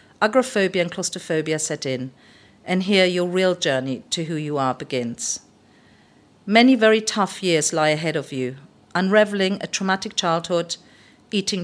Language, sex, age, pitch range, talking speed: English, female, 50-69, 155-205 Hz, 145 wpm